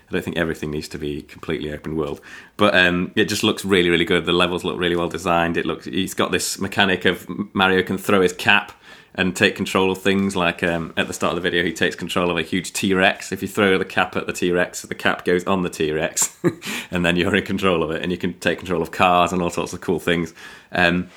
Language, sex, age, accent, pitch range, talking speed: English, male, 30-49, British, 85-105 Hz, 260 wpm